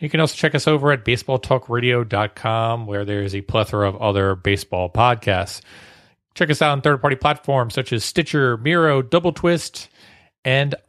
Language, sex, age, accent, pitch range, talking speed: English, male, 30-49, American, 105-145 Hz, 160 wpm